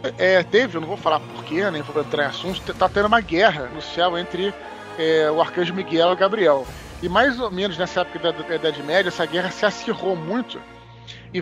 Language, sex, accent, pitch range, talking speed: Portuguese, male, Brazilian, 160-195 Hz, 215 wpm